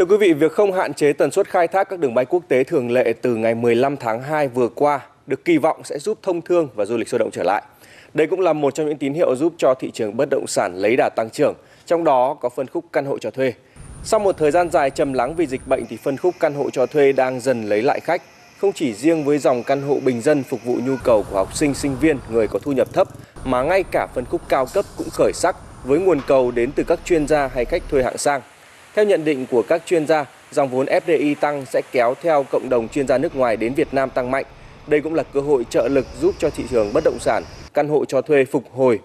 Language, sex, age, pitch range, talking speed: Vietnamese, male, 20-39, 130-175 Hz, 275 wpm